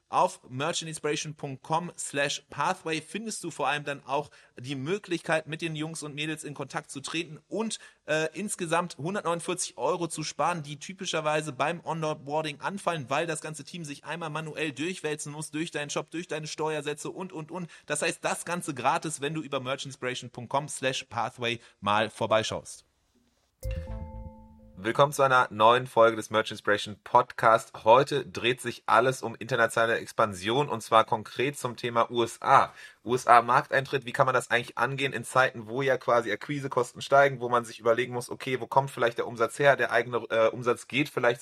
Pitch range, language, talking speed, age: 120-155 Hz, German, 170 wpm, 30-49